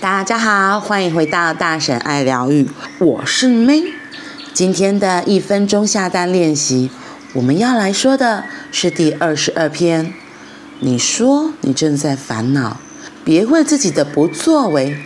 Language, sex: Chinese, female